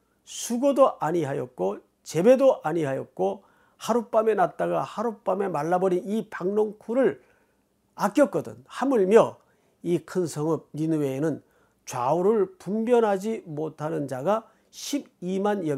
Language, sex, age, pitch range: Korean, male, 40-59, 145-220 Hz